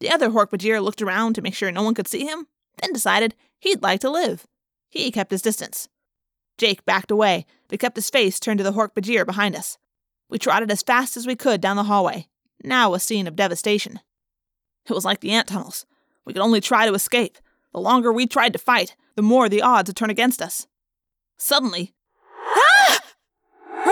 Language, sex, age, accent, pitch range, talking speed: English, female, 20-39, American, 215-345 Hz, 200 wpm